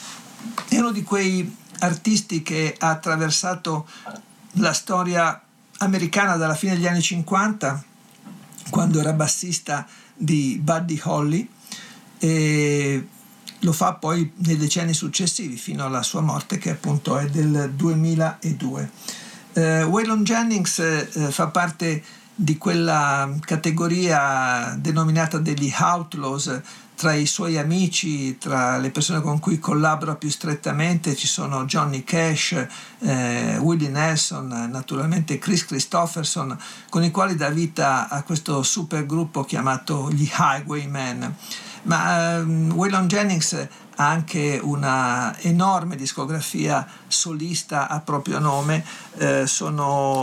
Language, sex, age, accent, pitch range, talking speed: Italian, male, 50-69, native, 145-180 Hz, 115 wpm